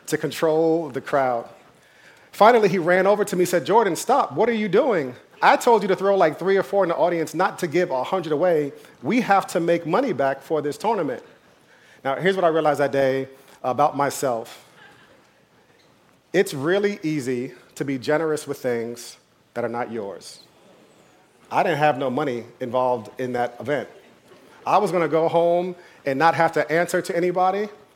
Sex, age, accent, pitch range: male, 40-59, American, 135-180 Hz